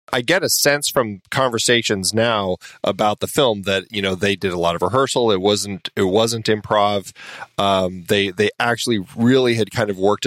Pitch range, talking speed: 100-120 Hz, 195 wpm